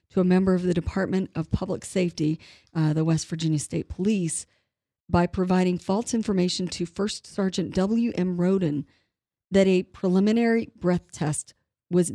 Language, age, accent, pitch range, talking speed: English, 40-59, American, 160-185 Hz, 150 wpm